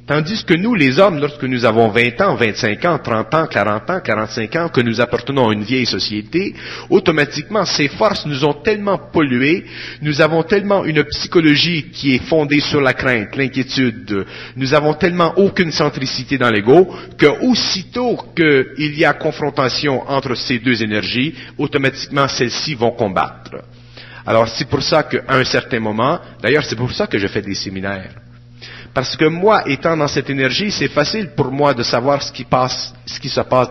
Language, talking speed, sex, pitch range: French, 180 wpm, male, 120-150 Hz